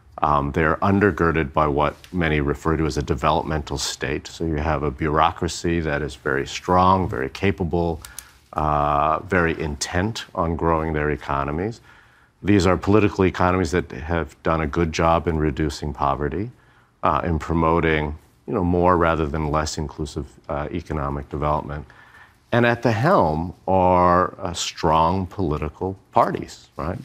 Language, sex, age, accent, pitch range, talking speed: English, male, 50-69, American, 75-95 Hz, 145 wpm